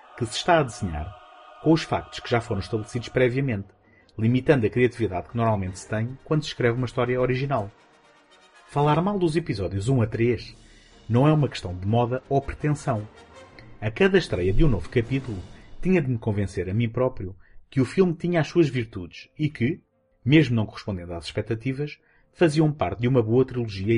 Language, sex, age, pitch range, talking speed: Portuguese, male, 30-49, 105-140 Hz, 190 wpm